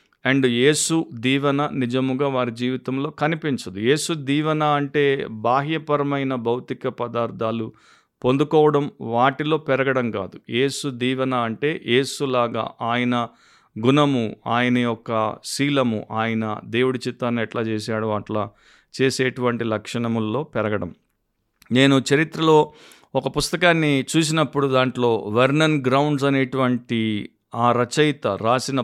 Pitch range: 120-150 Hz